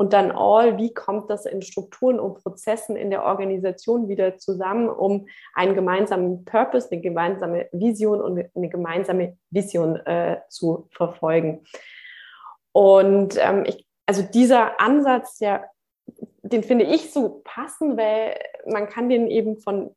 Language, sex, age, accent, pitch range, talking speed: German, female, 20-39, German, 195-235 Hz, 140 wpm